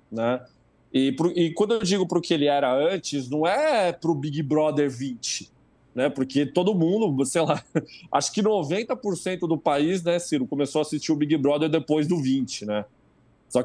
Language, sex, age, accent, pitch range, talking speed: Portuguese, male, 20-39, Brazilian, 140-185 Hz, 195 wpm